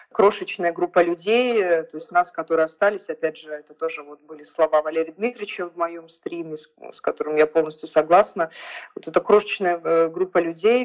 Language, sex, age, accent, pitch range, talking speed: Russian, female, 20-39, native, 160-195 Hz, 160 wpm